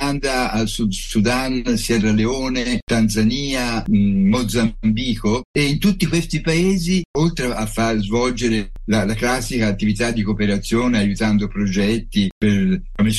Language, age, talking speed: Italian, 60-79, 125 wpm